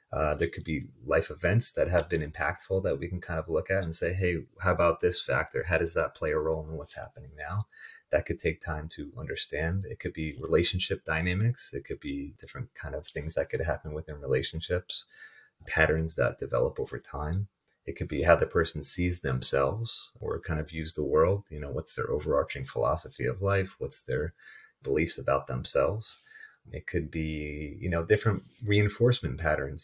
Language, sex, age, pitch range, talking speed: English, male, 30-49, 80-95 Hz, 195 wpm